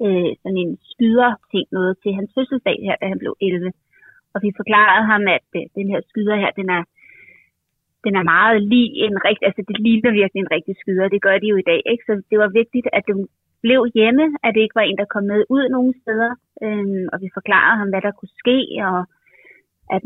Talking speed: 220 wpm